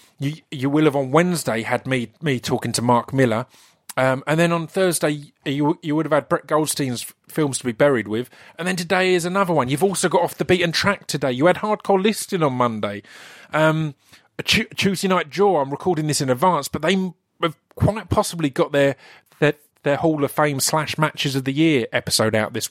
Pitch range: 115-155 Hz